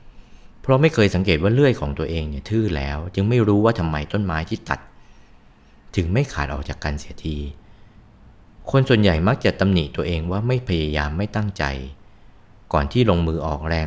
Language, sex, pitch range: Thai, male, 80-105 Hz